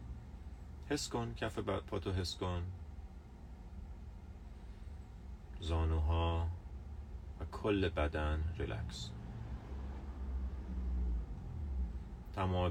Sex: male